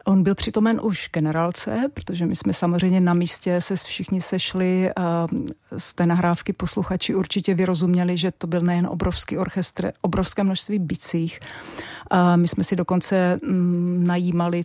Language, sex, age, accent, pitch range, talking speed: Czech, female, 40-59, native, 170-185 Hz, 145 wpm